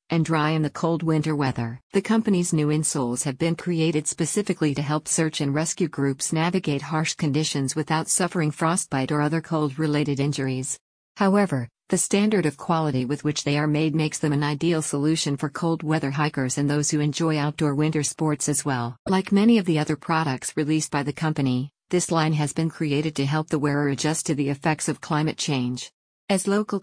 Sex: female